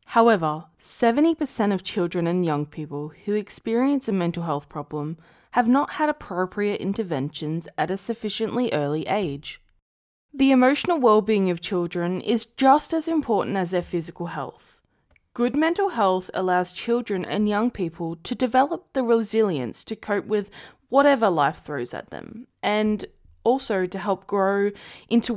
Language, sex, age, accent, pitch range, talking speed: English, female, 20-39, Australian, 180-255 Hz, 145 wpm